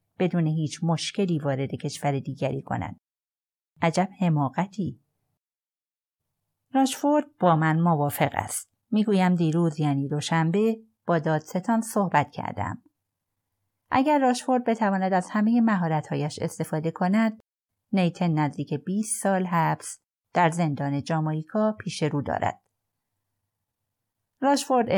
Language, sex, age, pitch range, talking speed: Persian, female, 30-49, 140-195 Hz, 100 wpm